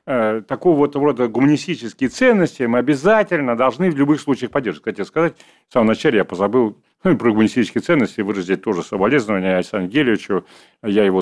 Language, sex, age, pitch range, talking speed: Russian, male, 40-59, 95-140 Hz, 165 wpm